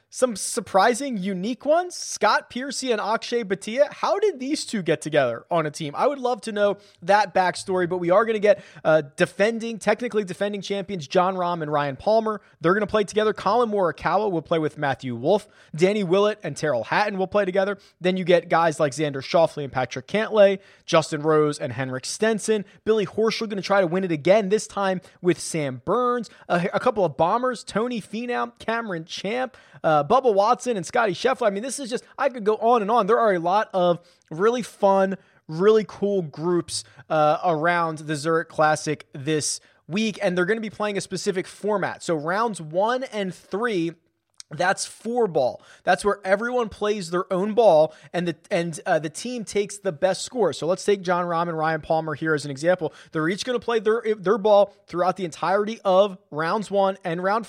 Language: English